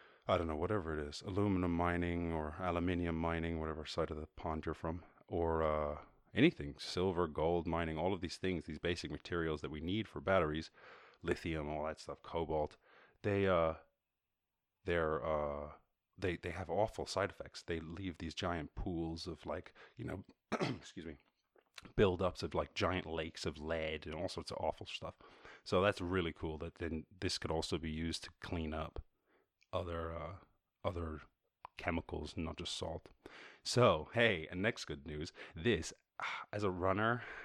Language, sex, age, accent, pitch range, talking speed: English, male, 30-49, American, 80-90 Hz, 170 wpm